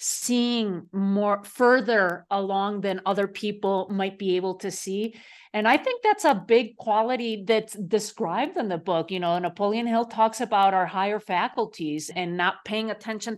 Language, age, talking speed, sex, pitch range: English, 40-59, 165 wpm, female, 190-225 Hz